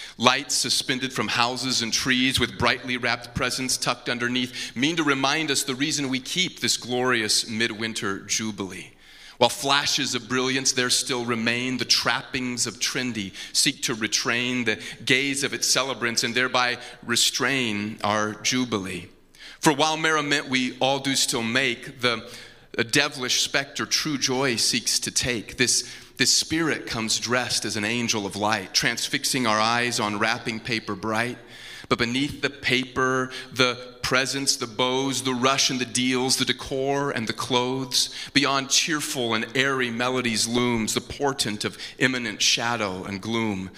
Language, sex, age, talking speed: English, male, 30-49, 155 wpm